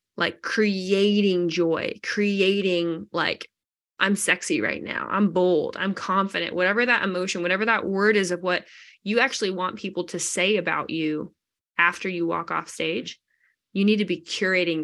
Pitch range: 180-225 Hz